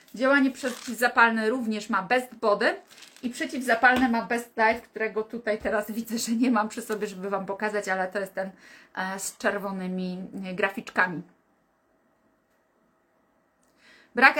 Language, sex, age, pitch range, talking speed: Polish, female, 30-49, 210-255 Hz, 130 wpm